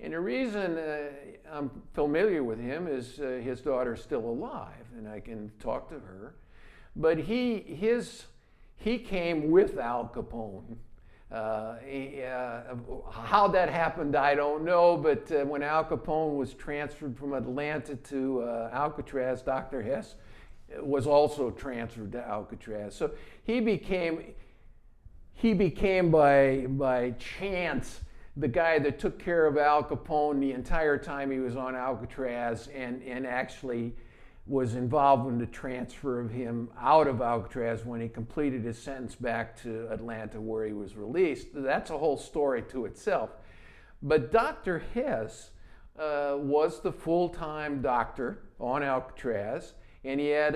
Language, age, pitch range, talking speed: English, 50-69, 115-150 Hz, 145 wpm